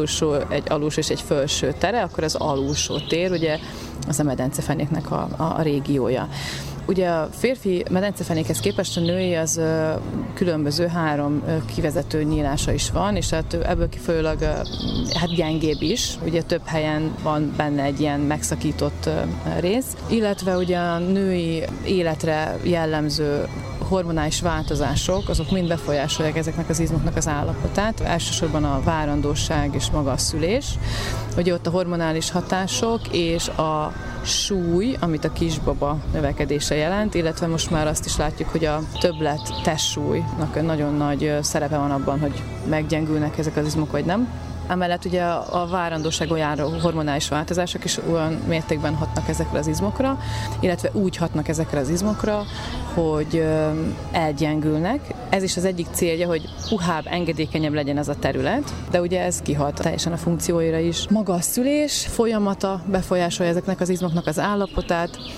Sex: female